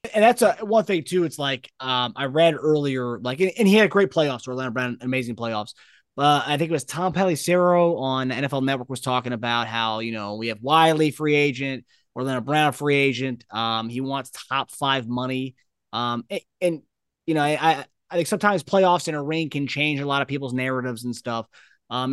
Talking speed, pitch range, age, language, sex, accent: 210 wpm, 130-180 Hz, 20-39, English, male, American